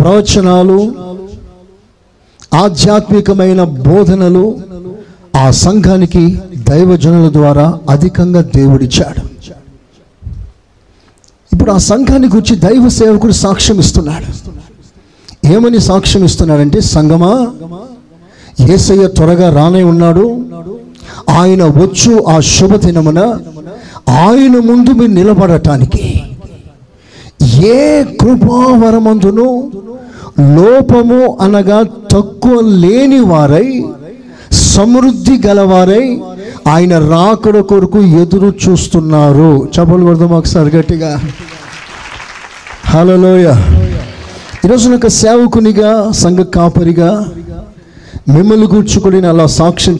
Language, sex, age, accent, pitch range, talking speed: Telugu, male, 50-69, native, 155-210 Hz, 70 wpm